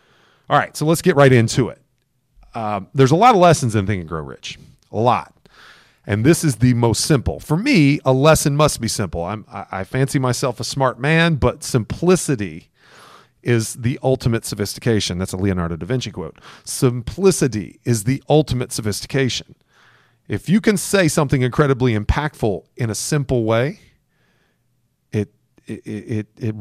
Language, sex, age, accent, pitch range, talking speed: English, male, 40-59, American, 110-145 Hz, 160 wpm